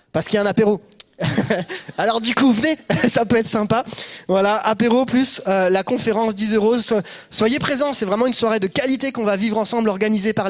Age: 20-39